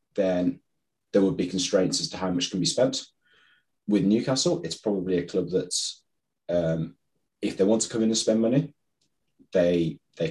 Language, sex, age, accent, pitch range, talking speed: English, male, 30-49, British, 90-130 Hz, 180 wpm